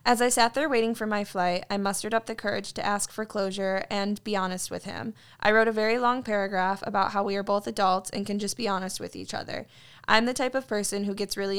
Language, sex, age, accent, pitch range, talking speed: English, female, 10-29, American, 190-220 Hz, 260 wpm